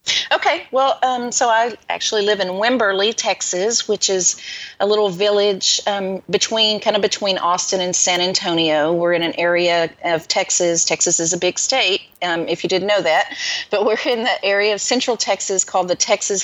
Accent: American